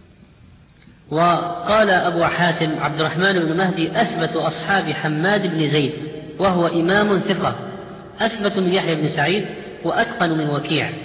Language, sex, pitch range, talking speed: Arabic, female, 160-190 Hz, 125 wpm